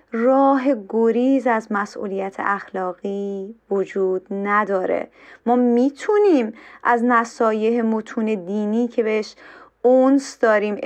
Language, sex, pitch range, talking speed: Persian, female, 205-255 Hz, 95 wpm